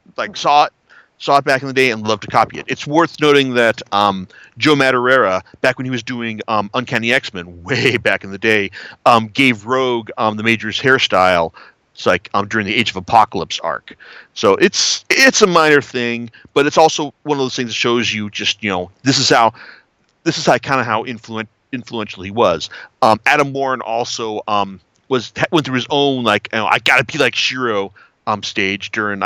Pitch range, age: 105-145 Hz, 40-59